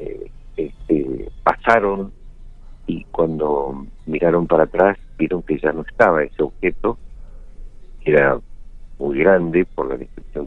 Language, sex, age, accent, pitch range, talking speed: Spanish, male, 60-79, Argentinian, 80-100 Hz, 115 wpm